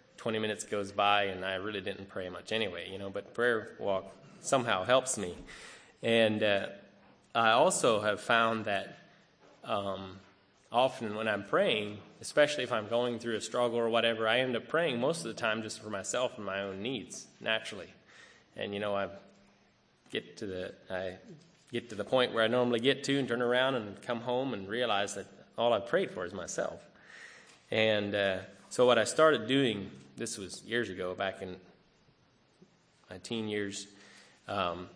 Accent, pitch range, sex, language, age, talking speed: American, 100-120 Hz, male, English, 20-39, 180 wpm